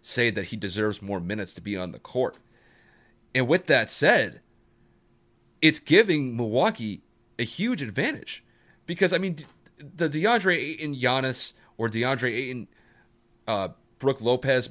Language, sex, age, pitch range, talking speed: English, male, 30-49, 120-165 Hz, 140 wpm